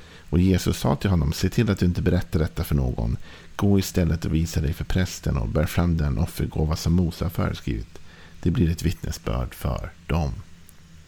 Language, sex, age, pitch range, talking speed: Swedish, male, 50-69, 80-95 Hz, 190 wpm